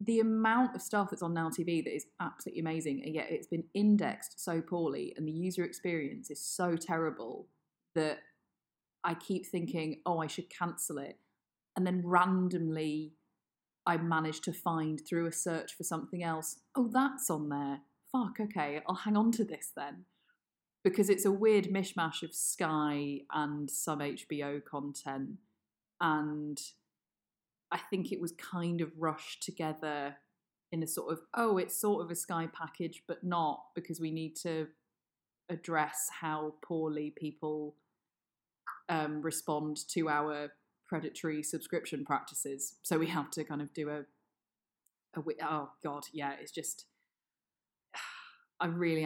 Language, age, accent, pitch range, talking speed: English, 30-49, British, 150-180 Hz, 150 wpm